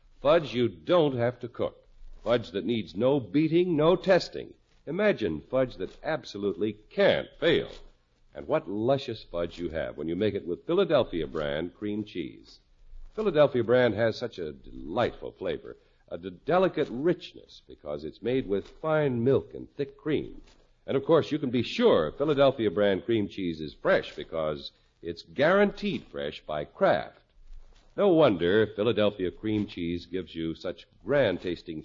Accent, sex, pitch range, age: American, male, 95-150 Hz, 60-79